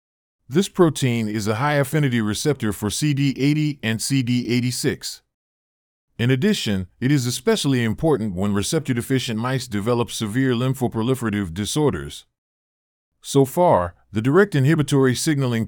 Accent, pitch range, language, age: American, 110-140 Hz, English, 30-49